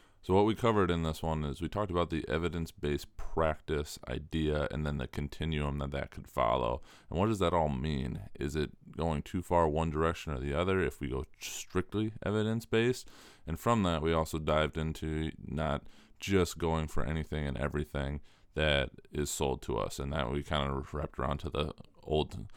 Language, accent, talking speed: English, American, 195 wpm